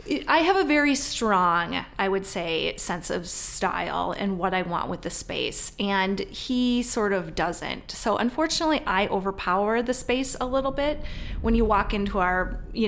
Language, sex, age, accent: English, female, 20-39, American